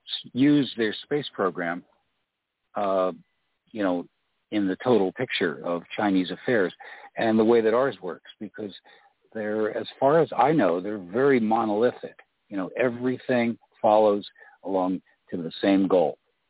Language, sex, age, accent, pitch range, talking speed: English, male, 60-79, American, 95-120 Hz, 140 wpm